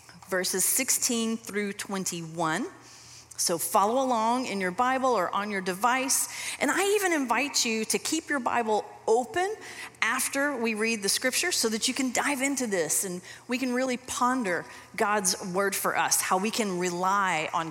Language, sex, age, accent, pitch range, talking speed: English, female, 30-49, American, 185-250 Hz, 170 wpm